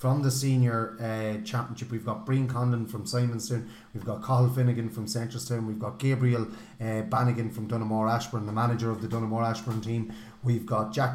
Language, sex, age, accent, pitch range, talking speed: English, male, 30-49, Irish, 110-125 Hz, 190 wpm